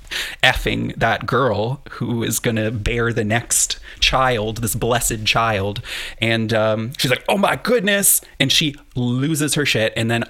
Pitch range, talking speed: 105-130 Hz, 155 wpm